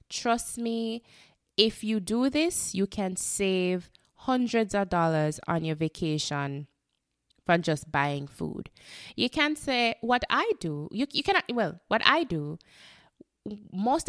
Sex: female